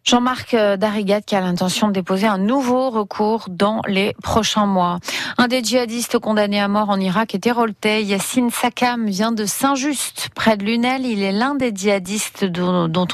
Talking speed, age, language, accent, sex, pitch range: 175 wpm, 30-49, French, French, female, 190-235 Hz